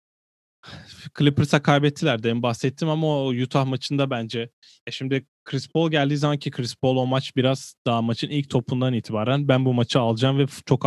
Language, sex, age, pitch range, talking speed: Turkish, male, 20-39, 120-145 Hz, 175 wpm